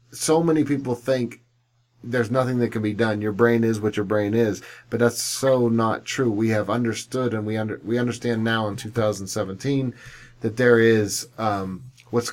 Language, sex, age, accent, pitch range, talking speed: English, male, 40-59, American, 115-130 Hz, 185 wpm